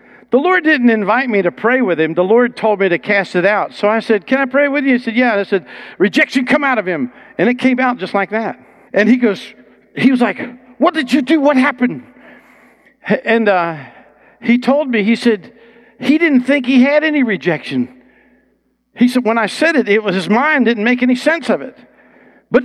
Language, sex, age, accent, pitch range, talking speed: English, male, 50-69, American, 200-280 Hz, 225 wpm